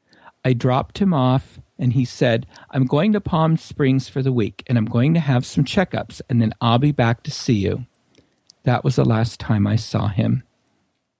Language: English